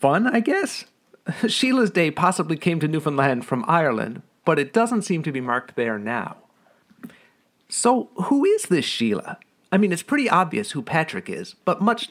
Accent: American